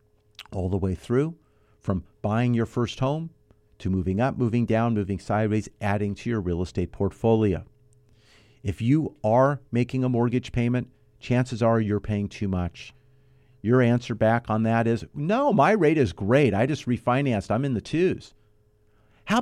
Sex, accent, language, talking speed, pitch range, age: male, American, English, 165 wpm, 100-125 Hz, 50-69